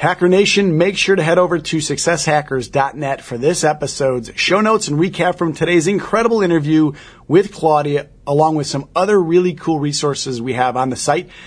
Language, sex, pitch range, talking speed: English, male, 145-180 Hz, 180 wpm